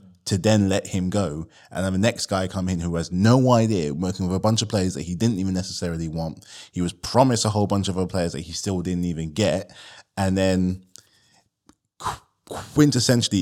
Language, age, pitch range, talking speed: English, 20-39, 90-115 Hz, 205 wpm